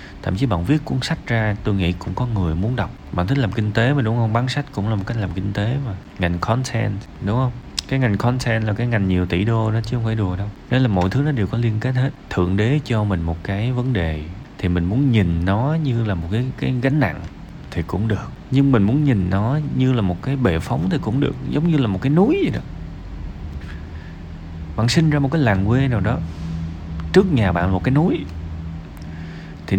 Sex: male